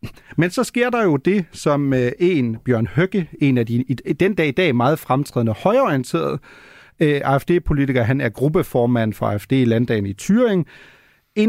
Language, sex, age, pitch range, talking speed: Danish, male, 40-59, 130-175 Hz, 145 wpm